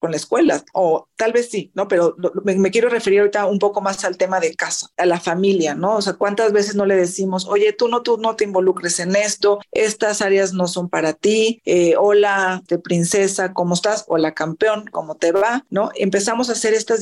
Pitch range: 180-210 Hz